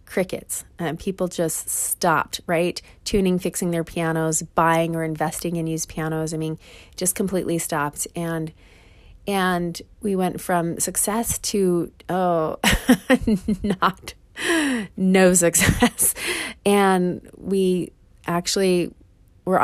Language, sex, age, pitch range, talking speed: English, female, 30-49, 165-185 Hz, 115 wpm